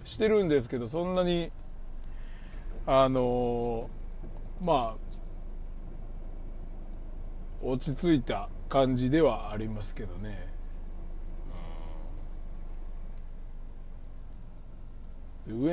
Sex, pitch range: male, 90-135 Hz